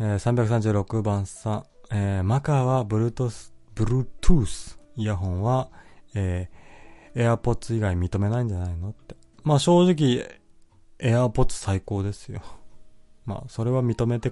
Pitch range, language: 95-130 Hz, Japanese